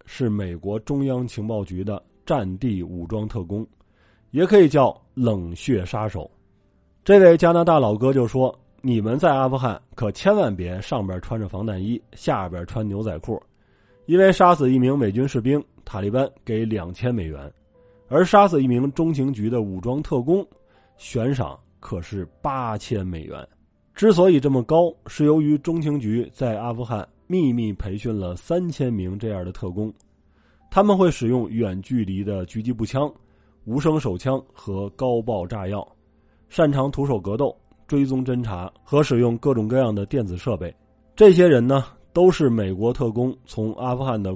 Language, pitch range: Chinese, 100-135 Hz